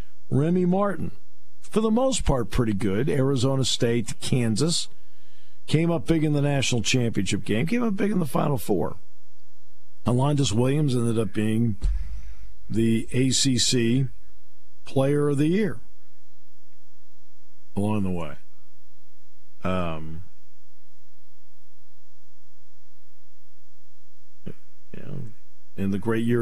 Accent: American